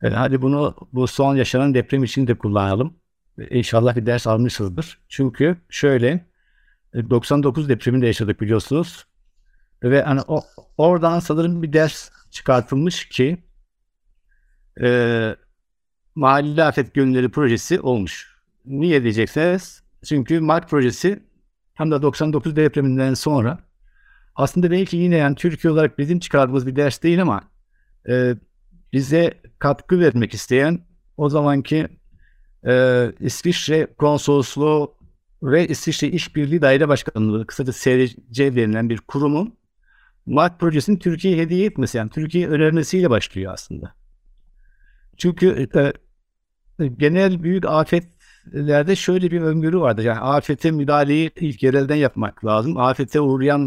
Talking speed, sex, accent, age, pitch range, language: 115 wpm, male, native, 60-79, 125-160 Hz, Turkish